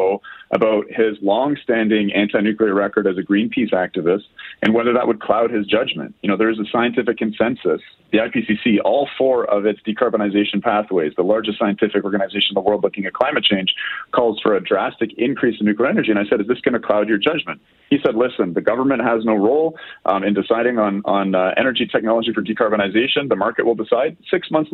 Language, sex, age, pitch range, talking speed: English, male, 30-49, 105-125 Hz, 205 wpm